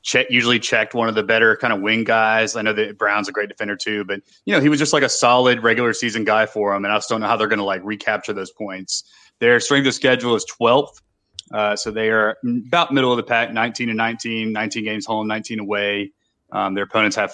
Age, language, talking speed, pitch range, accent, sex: 30-49, English, 255 wpm, 100-115 Hz, American, male